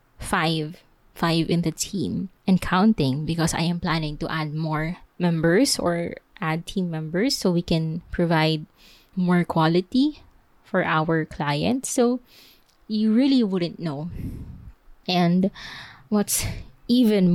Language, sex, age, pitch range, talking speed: English, female, 20-39, 165-195 Hz, 125 wpm